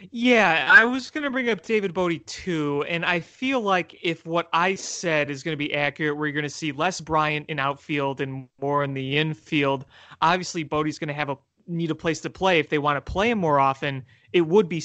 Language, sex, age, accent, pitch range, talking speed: English, male, 30-49, American, 140-180 Hz, 230 wpm